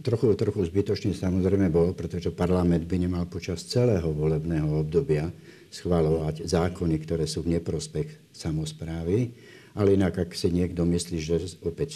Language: Slovak